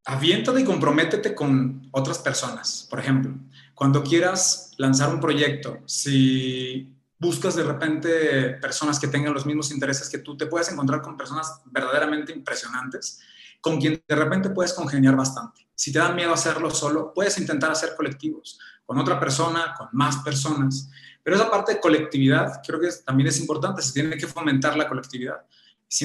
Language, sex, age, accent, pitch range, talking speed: Spanish, male, 30-49, Mexican, 135-165 Hz, 170 wpm